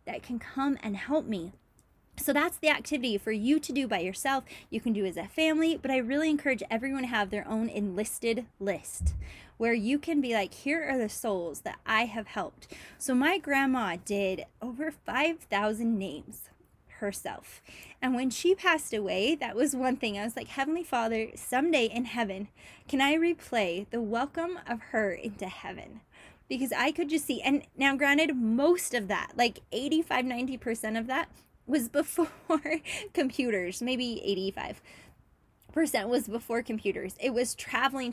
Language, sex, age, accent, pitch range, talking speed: English, female, 20-39, American, 210-265 Hz, 170 wpm